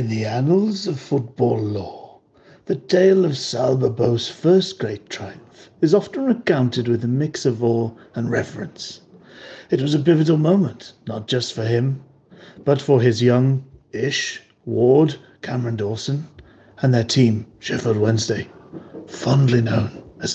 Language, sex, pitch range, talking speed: English, male, 120-150 Hz, 140 wpm